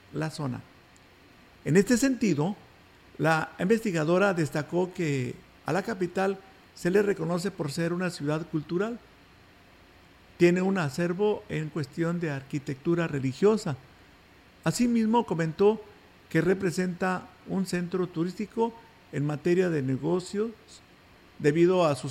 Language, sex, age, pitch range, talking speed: Spanish, male, 50-69, 150-195 Hz, 115 wpm